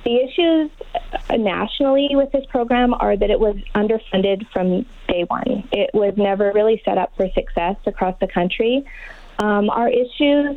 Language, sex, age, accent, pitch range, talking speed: English, female, 20-39, American, 195-245 Hz, 160 wpm